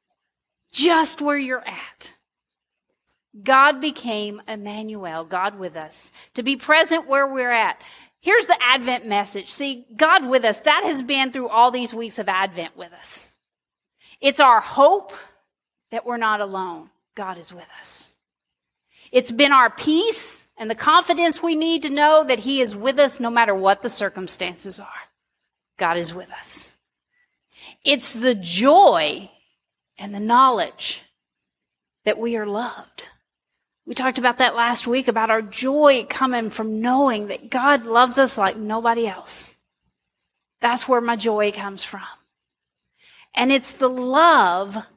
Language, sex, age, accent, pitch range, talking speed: English, female, 40-59, American, 210-265 Hz, 150 wpm